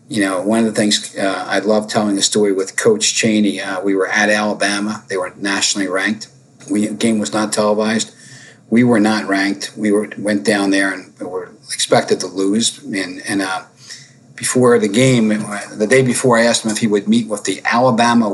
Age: 40-59